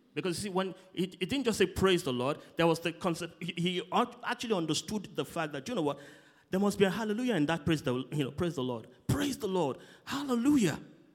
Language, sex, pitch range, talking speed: English, male, 140-185 Hz, 235 wpm